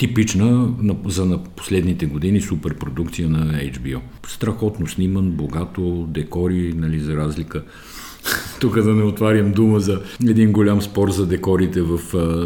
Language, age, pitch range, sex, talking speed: Bulgarian, 50-69, 80-100 Hz, male, 130 wpm